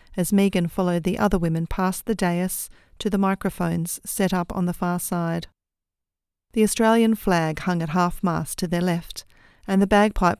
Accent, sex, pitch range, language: Australian, female, 155-185 Hz, English